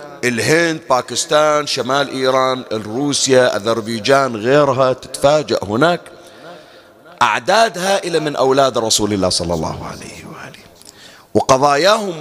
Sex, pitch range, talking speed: male, 120-155 Hz, 100 wpm